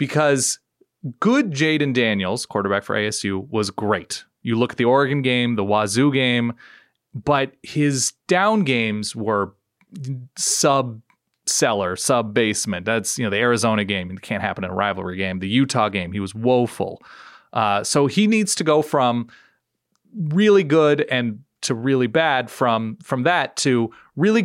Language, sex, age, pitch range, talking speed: English, male, 30-49, 110-145 Hz, 150 wpm